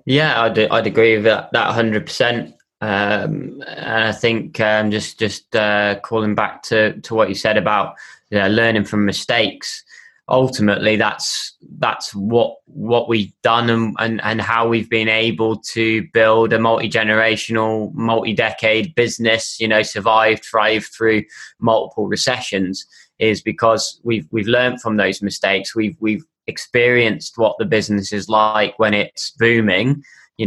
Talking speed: 150 wpm